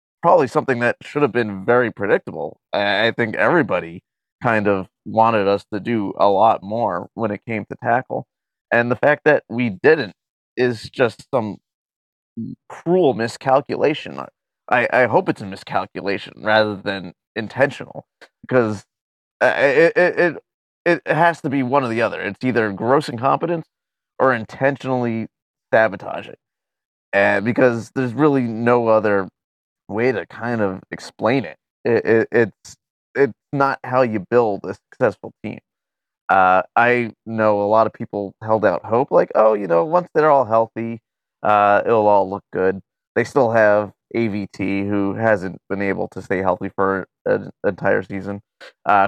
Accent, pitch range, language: American, 100-125 Hz, English